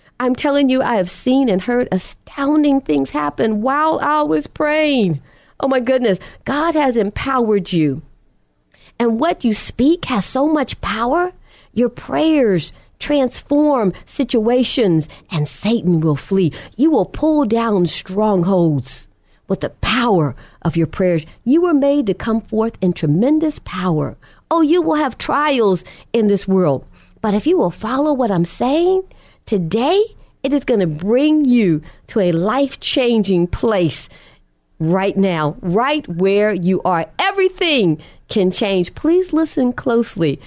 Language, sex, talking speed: English, female, 145 wpm